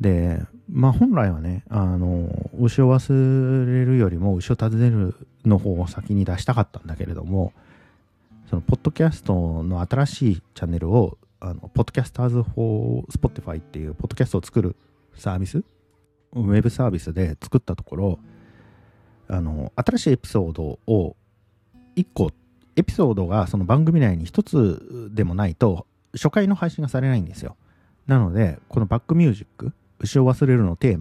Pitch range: 90-125 Hz